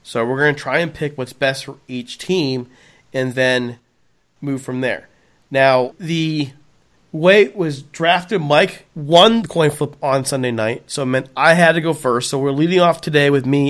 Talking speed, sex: 200 wpm, male